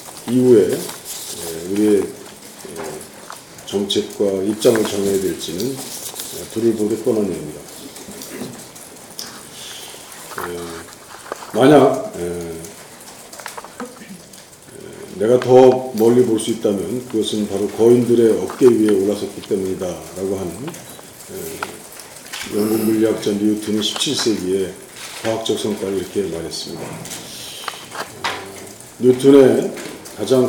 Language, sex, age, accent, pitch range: Korean, male, 40-59, native, 105-125 Hz